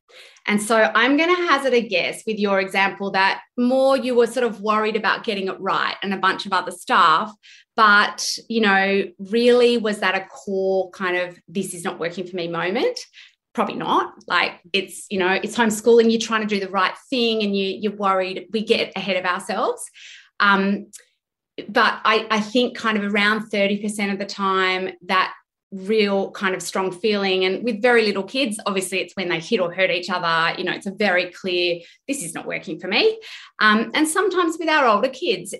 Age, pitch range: 20-39, 190-240 Hz